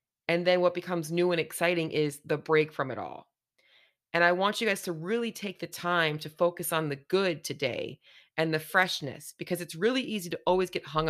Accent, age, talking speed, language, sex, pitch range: American, 30-49, 215 wpm, English, female, 145-180 Hz